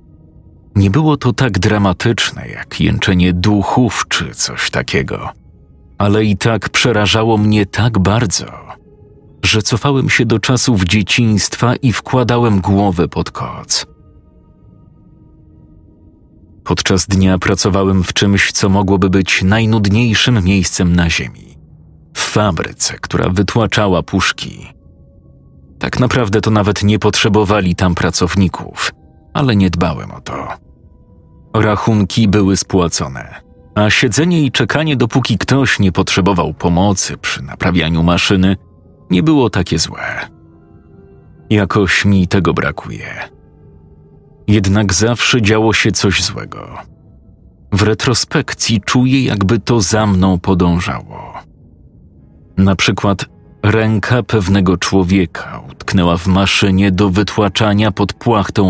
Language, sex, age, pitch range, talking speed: Polish, male, 40-59, 90-110 Hz, 110 wpm